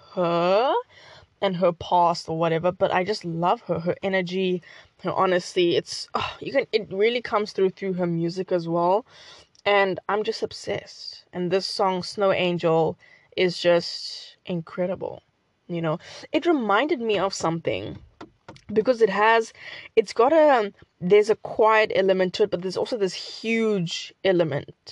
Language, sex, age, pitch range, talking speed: English, female, 10-29, 180-225 Hz, 160 wpm